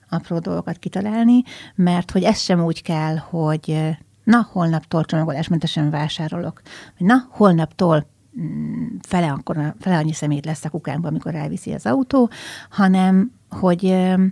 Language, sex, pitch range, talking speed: Hungarian, female, 160-195 Hz, 125 wpm